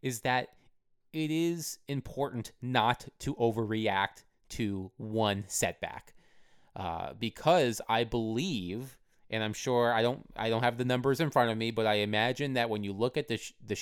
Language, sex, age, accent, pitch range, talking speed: English, male, 30-49, American, 110-130 Hz, 175 wpm